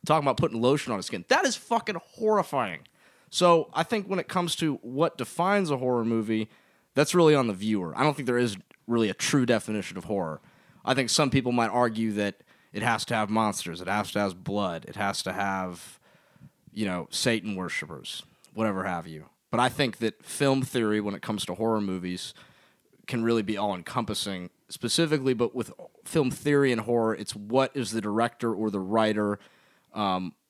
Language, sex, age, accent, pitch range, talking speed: English, male, 20-39, American, 95-120 Hz, 195 wpm